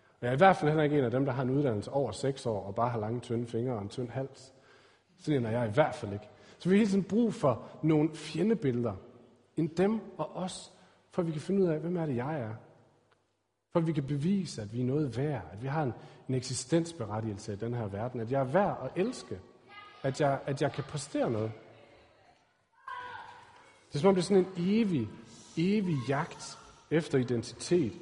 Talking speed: 225 wpm